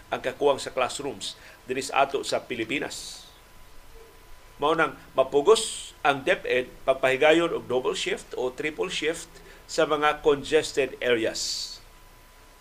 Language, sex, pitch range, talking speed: Filipino, male, 130-160 Hz, 110 wpm